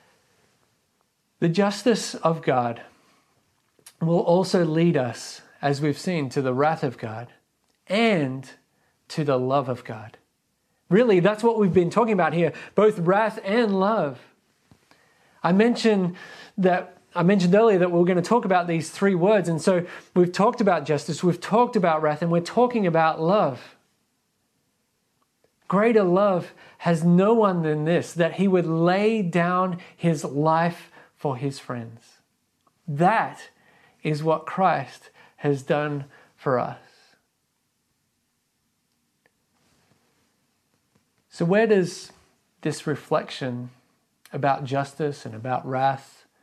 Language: English